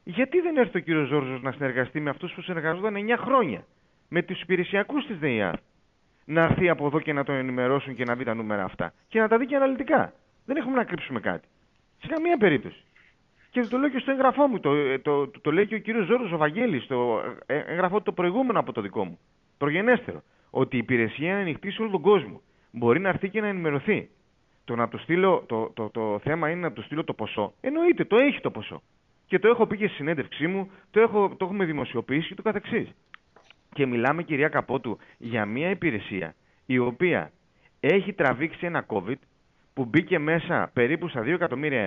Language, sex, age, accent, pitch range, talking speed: Greek, male, 30-49, native, 130-205 Hz, 210 wpm